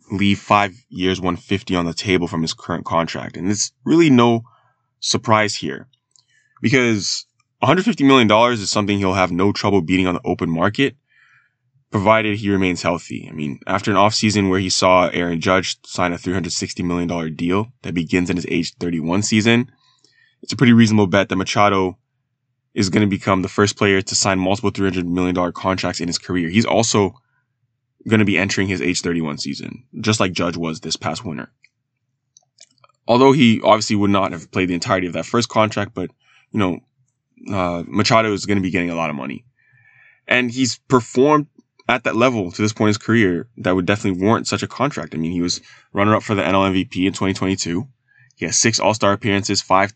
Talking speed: 195 wpm